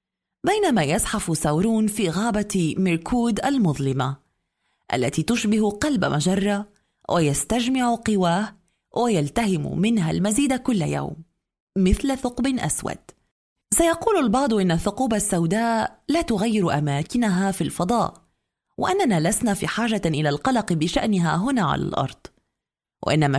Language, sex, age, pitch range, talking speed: Arabic, female, 30-49, 175-255 Hz, 110 wpm